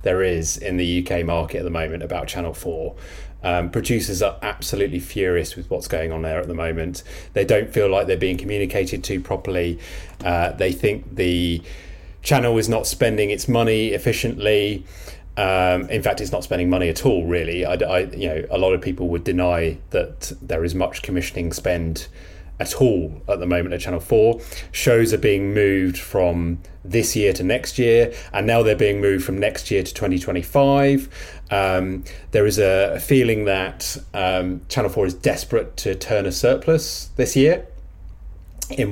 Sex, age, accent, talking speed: male, 30-49, British, 180 wpm